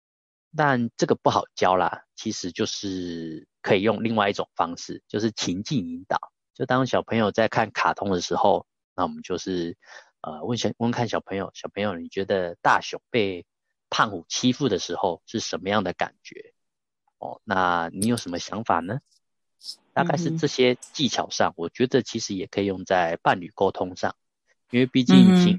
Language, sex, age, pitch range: Chinese, male, 20-39, 90-135 Hz